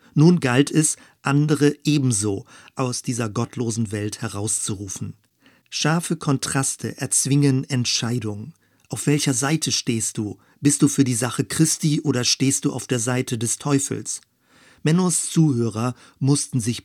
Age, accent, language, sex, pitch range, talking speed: 50-69, German, German, male, 120-140 Hz, 130 wpm